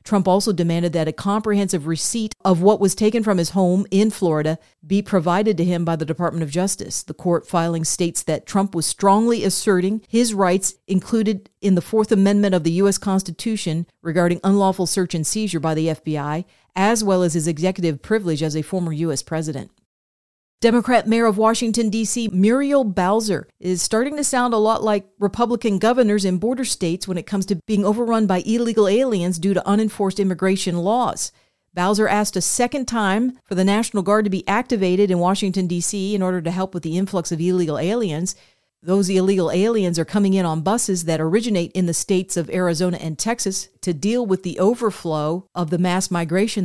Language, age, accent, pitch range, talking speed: English, 40-59, American, 175-210 Hz, 190 wpm